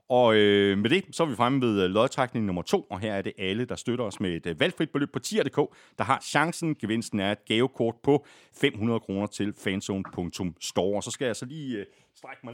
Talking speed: 215 wpm